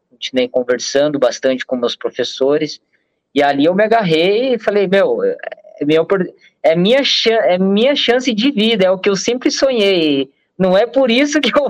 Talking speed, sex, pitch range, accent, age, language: 160 wpm, male, 135-190 Hz, Brazilian, 20-39, Portuguese